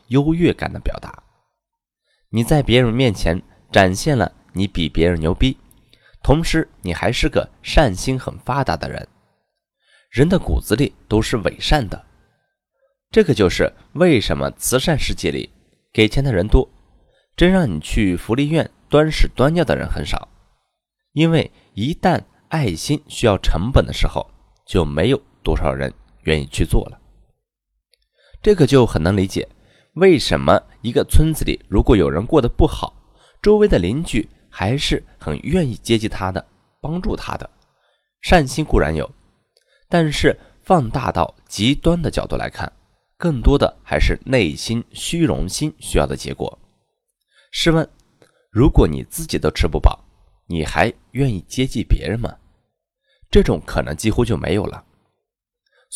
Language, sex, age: Chinese, male, 20-39